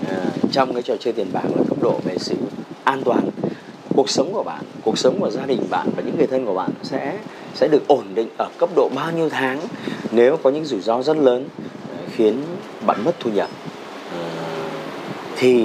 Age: 30-49